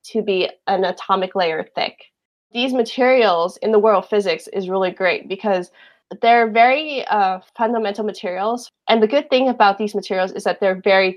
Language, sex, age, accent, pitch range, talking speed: English, female, 20-39, American, 190-225 Hz, 175 wpm